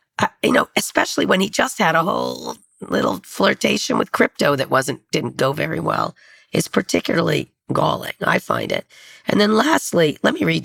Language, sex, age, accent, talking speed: English, female, 40-59, American, 175 wpm